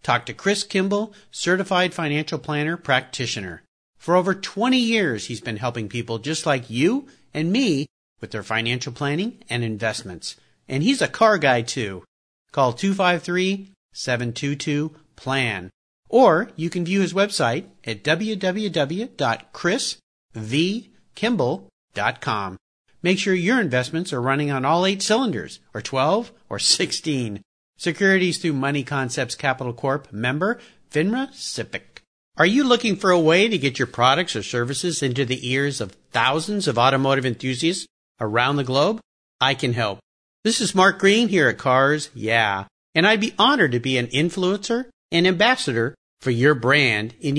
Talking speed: 145 wpm